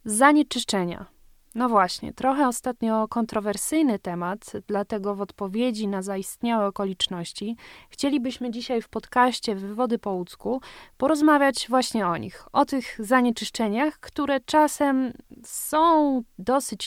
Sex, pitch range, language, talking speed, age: female, 200-245 Hz, Polish, 110 wpm, 20-39